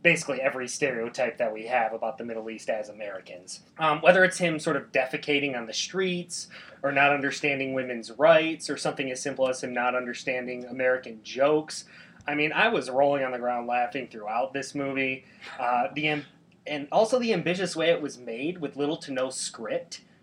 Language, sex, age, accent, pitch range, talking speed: English, male, 20-39, American, 130-175 Hz, 195 wpm